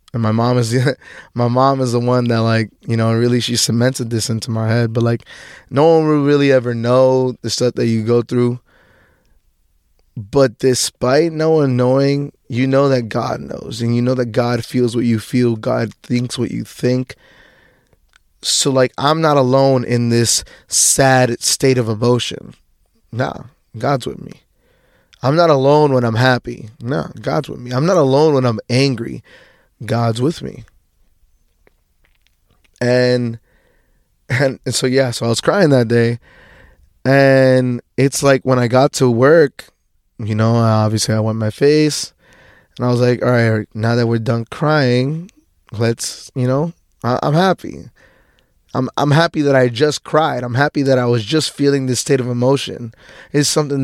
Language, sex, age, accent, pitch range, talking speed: English, male, 20-39, American, 115-135 Hz, 175 wpm